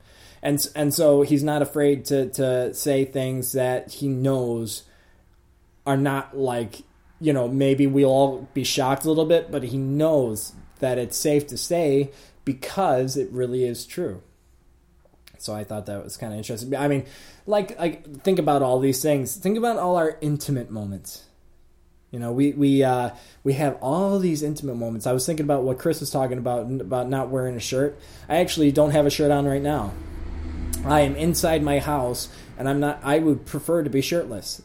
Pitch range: 120-145 Hz